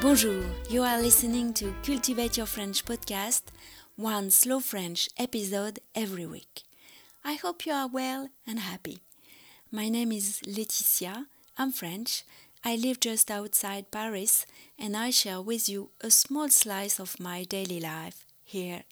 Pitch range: 190-235 Hz